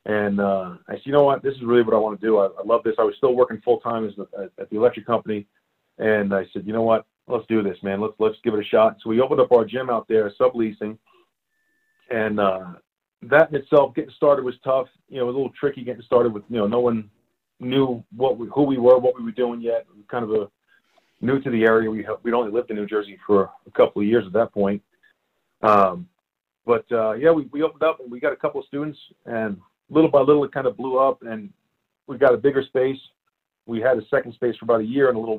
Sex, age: male, 40-59